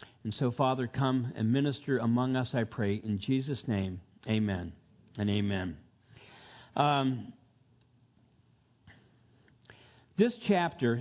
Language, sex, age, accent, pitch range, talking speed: English, male, 50-69, American, 120-160 Hz, 105 wpm